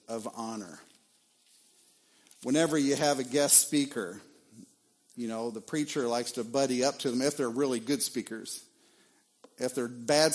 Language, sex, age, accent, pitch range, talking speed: English, male, 50-69, American, 120-155 Hz, 150 wpm